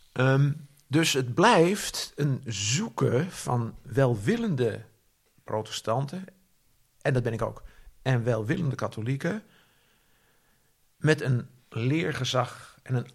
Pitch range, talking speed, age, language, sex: 115-150 Hz, 100 wpm, 50-69, Dutch, male